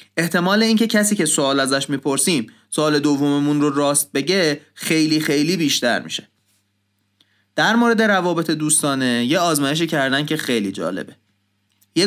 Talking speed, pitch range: 135 wpm, 135-170 Hz